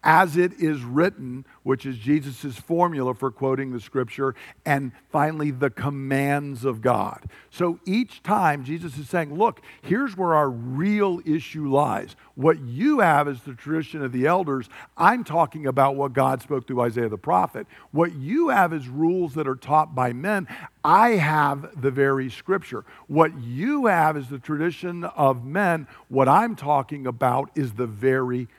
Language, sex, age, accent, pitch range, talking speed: English, male, 50-69, American, 130-160 Hz, 170 wpm